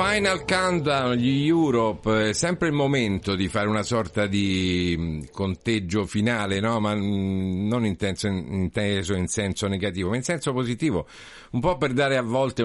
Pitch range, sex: 90-115 Hz, male